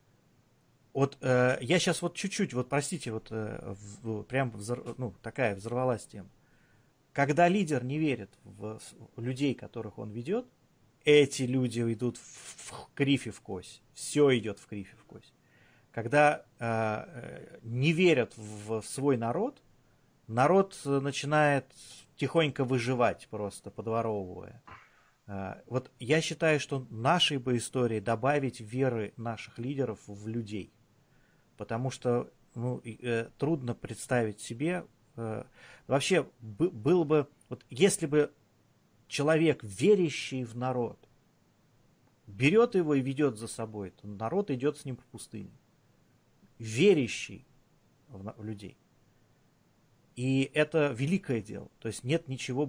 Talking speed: 120 wpm